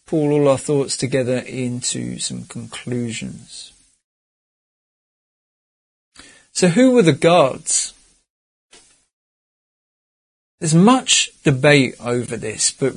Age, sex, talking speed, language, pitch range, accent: 40-59, male, 95 wpm, English, 130-170 Hz, British